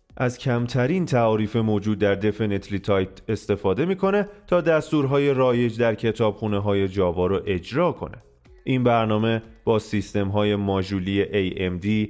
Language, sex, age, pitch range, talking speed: Persian, male, 30-49, 95-125 Hz, 125 wpm